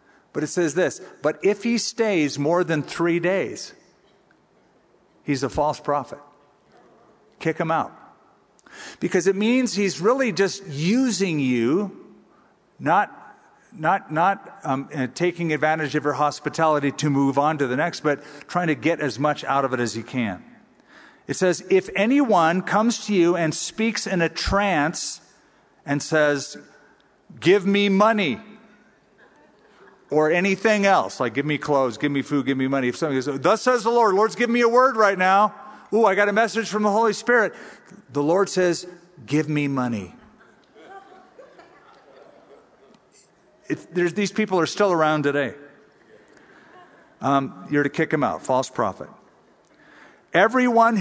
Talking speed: 155 wpm